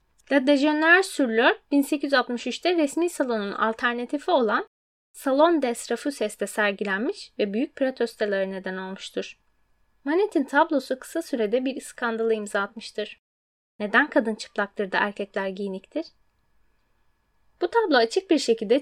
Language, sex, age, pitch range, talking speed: Turkish, female, 10-29, 215-295 Hz, 110 wpm